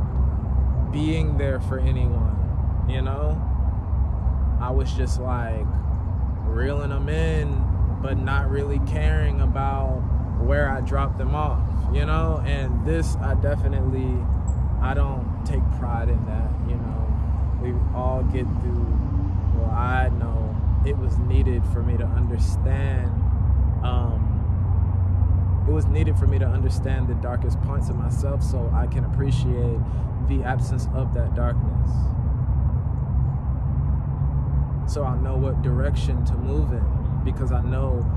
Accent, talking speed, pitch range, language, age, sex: American, 130 wpm, 70-95 Hz, English, 20-39, male